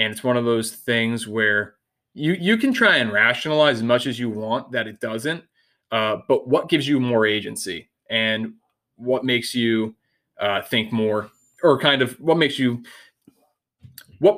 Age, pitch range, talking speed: 20-39, 115-140 Hz, 175 wpm